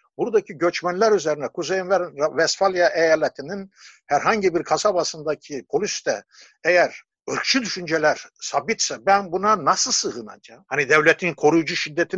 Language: Turkish